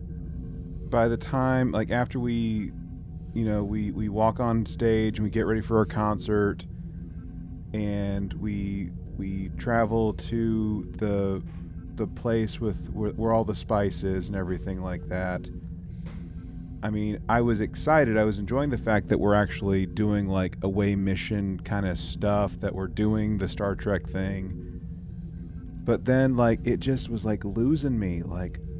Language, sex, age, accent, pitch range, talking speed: English, male, 30-49, American, 85-110 Hz, 160 wpm